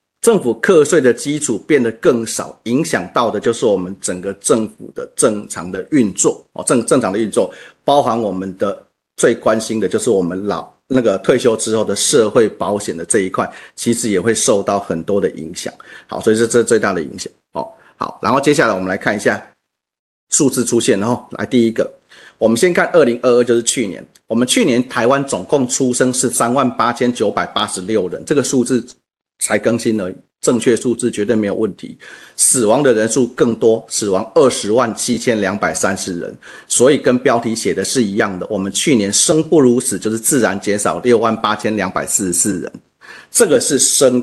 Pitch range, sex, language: 105-125 Hz, male, Chinese